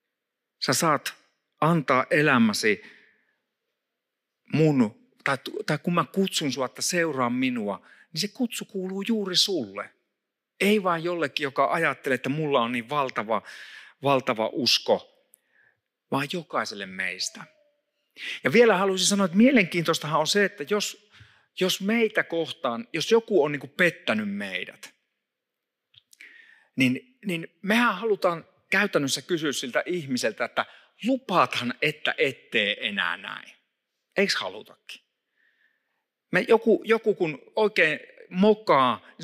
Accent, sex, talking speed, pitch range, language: native, male, 120 wpm, 155-225 Hz, Finnish